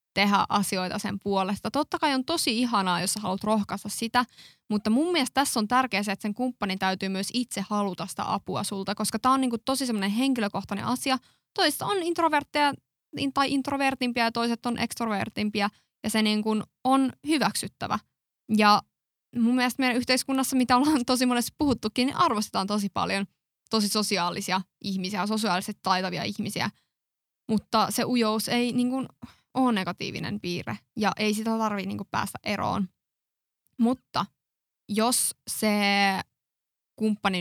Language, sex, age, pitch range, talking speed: Finnish, female, 20-39, 200-250 Hz, 145 wpm